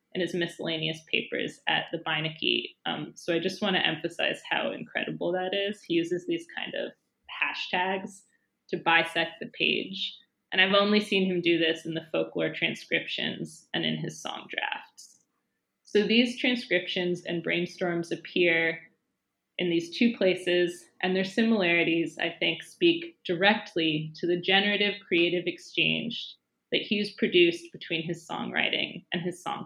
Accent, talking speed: American, 150 wpm